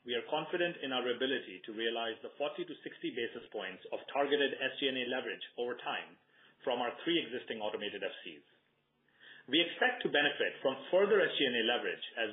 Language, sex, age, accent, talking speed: English, male, 40-59, Indian, 170 wpm